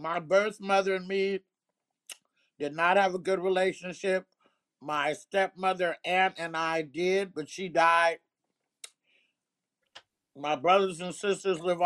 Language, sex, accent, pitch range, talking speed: English, male, American, 145-175 Hz, 125 wpm